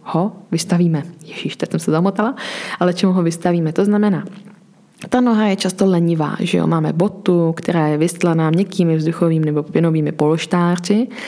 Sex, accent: female, native